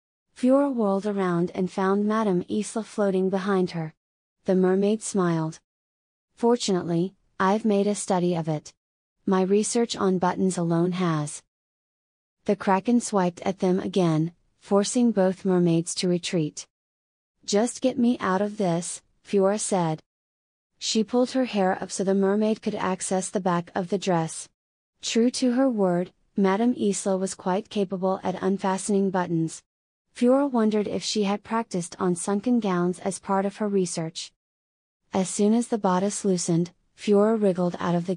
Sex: female